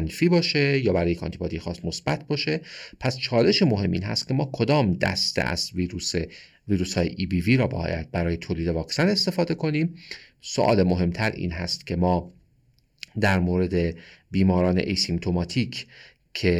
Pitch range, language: 85-125 Hz, Persian